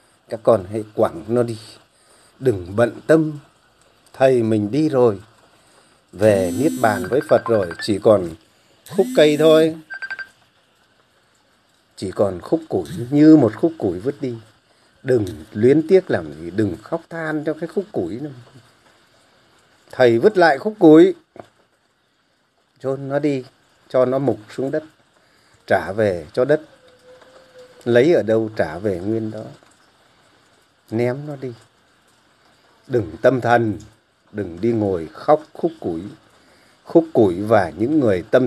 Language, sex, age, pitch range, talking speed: Vietnamese, male, 30-49, 110-150 Hz, 140 wpm